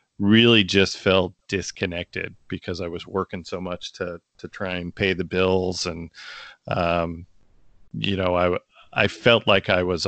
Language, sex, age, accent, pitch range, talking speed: English, male, 40-59, American, 95-115 Hz, 160 wpm